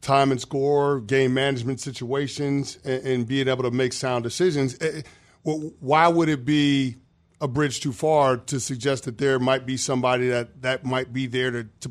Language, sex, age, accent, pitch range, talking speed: English, male, 40-59, American, 130-155 Hz, 190 wpm